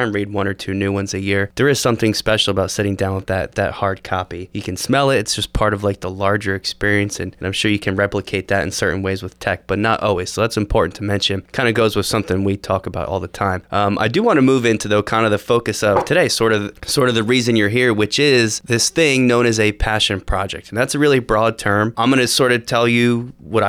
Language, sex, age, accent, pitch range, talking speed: English, male, 20-39, American, 100-115 Hz, 275 wpm